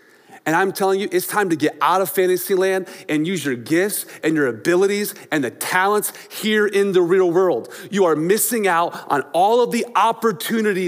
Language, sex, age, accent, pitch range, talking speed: English, male, 30-49, American, 145-210 Hz, 200 wpm